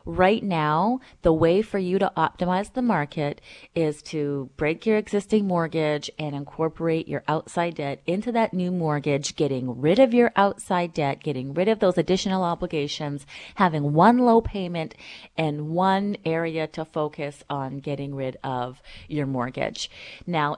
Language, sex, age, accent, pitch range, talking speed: English, female, 30-49, American, 155-210 Hz, 155 wpm